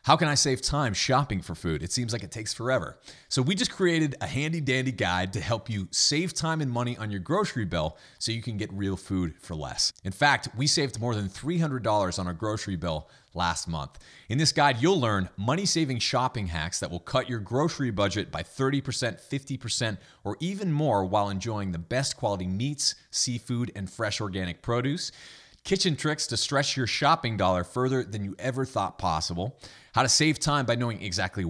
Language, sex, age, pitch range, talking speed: English, male, 30-49, 95-135 Hz, 200 wpm